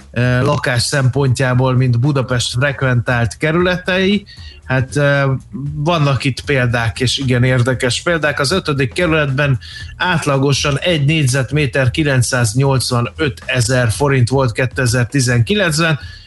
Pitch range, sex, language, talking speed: 125-145 Hz, male, Hungarian, 90 wpm